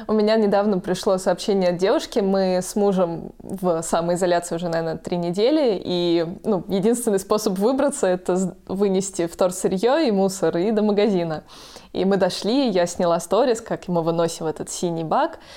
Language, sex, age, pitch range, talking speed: Russian, female, 20-39, 175-210 Hz, 165 wpm